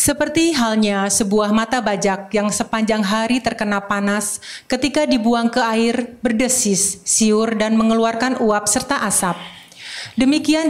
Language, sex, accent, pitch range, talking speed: Indonesian, female, native, 205-250 Hz, 125 wpm